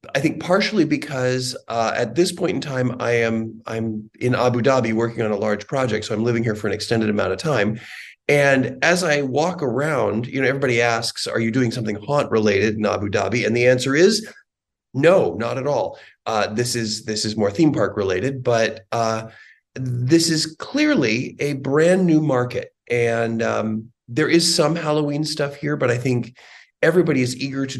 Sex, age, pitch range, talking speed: male, 40-59, 110-145 Hz, 195 wpm